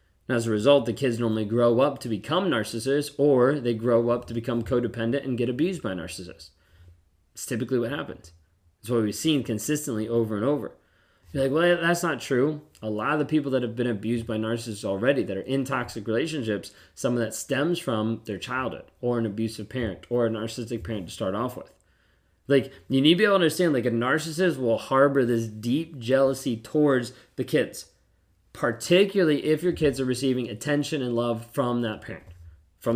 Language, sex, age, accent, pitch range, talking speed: English, male, 20-39, American, 110-140 Hz, 200 wpm